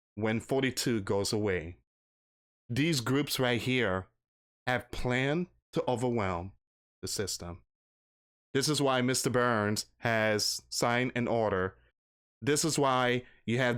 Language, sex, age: English, male, 20-39